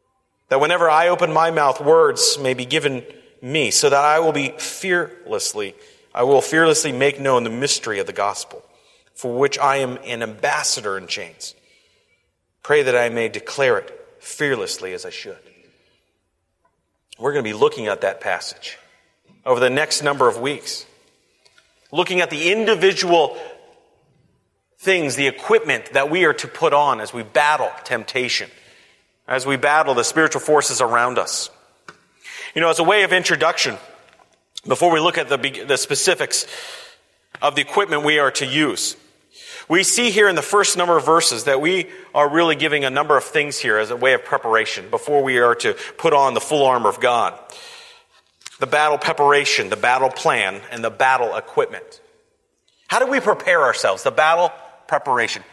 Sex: male